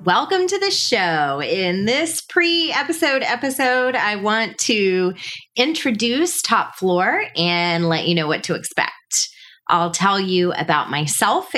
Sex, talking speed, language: female, 135 wpm, English